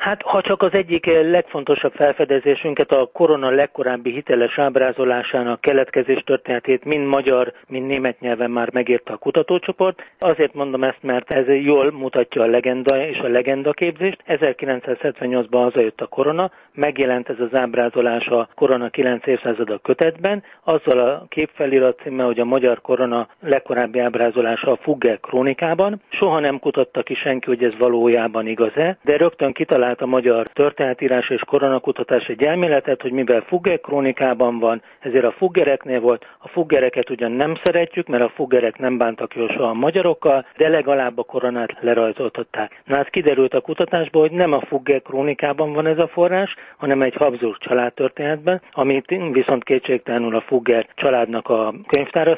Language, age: Hungarian, 40-59